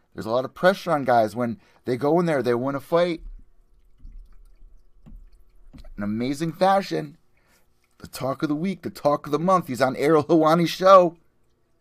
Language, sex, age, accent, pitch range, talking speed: English, male, 30-49, American, 115-175 Hz, 175 wpm